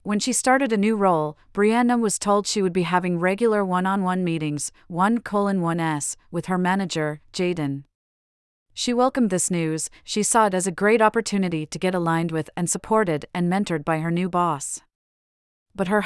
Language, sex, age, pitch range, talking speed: English, female, 40-59, 165-205 Hz, 170 wpm